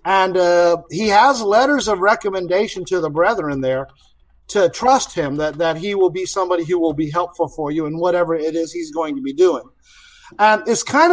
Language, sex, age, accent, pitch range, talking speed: English, male, 50-69, American, 165-220 Hz, 205 wpm